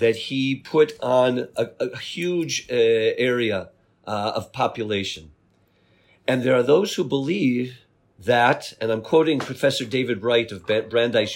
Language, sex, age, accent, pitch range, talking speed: English, male, 50-69, American, 115-150 Hz, 145 wpm